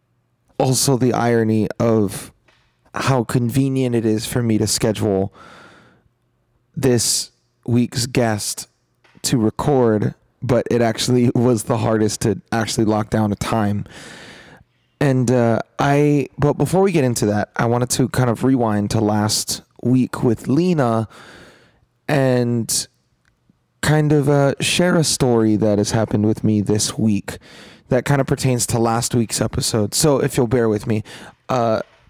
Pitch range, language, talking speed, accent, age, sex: 110-135 Hz, English, 145 wpm, American, 20-39, male